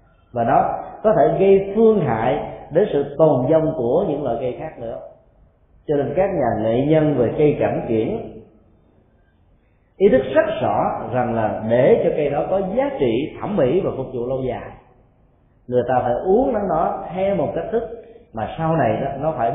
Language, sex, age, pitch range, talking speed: Vietnamese, male, 20-39, 115-175 Hz, 190 wpm